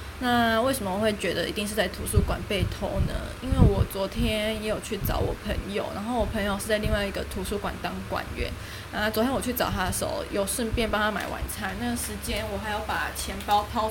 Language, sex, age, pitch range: Chinese, female, 10-29, 210-240 Hz